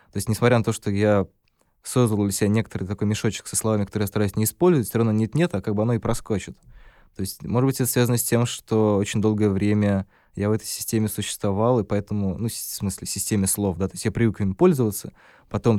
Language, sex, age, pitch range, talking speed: Russian, male, 20-39, 100-115 Hz, 235 wpm